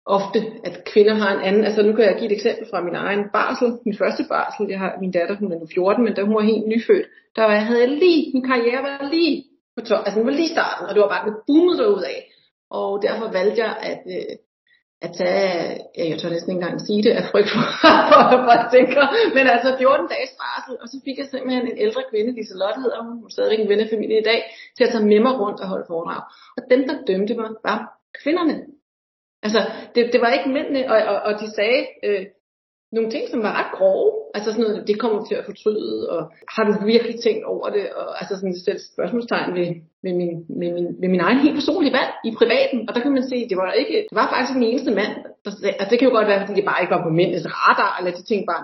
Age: 30-49